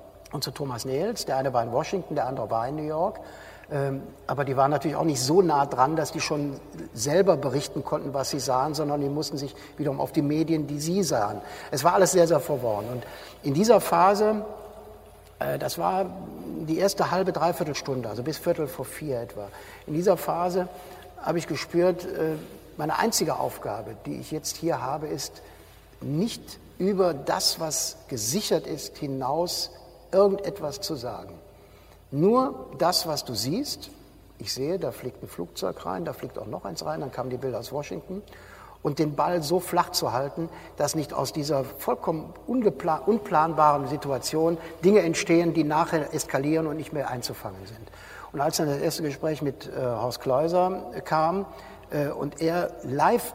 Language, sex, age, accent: German, male, 60-79, German